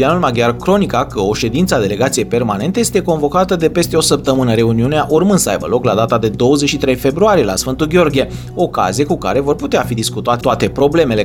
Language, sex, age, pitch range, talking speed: Romanian, male, 30-49, 120-160 Hz, 195 wpm